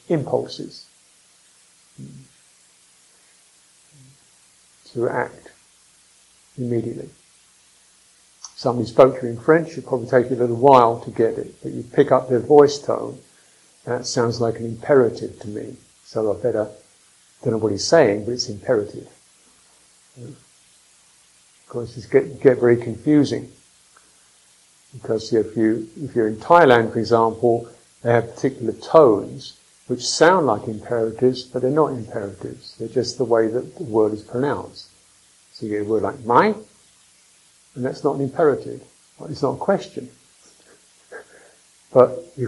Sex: male